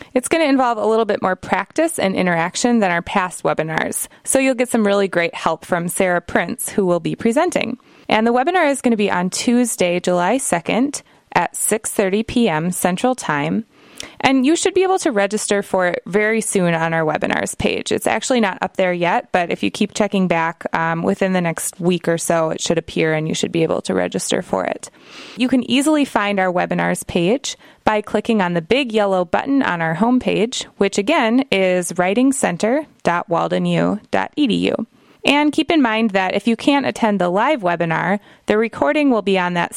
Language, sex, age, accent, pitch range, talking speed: English, female, 20-39, American, 180-245 Hz, 195 wpm